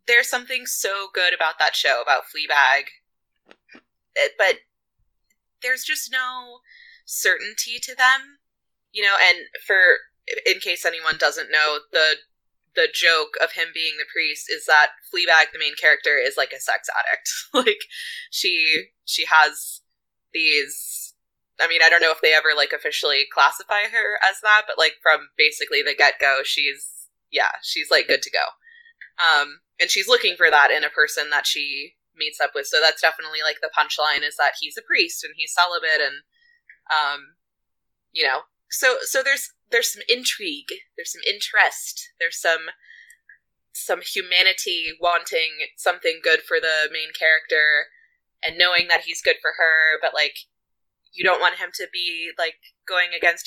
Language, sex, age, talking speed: English, female, 20-39, 165 wpm